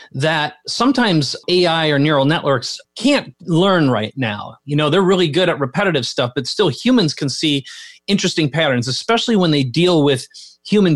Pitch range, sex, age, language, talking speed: 130-175 Hz, male, 30-49, English, 170 wpm